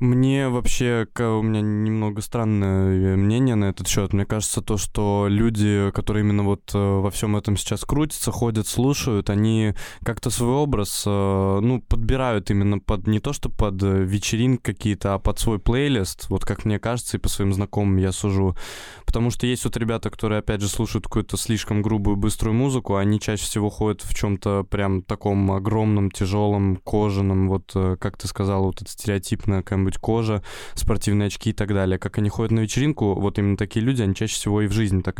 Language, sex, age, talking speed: Russian, male, 20-39, 180 wpm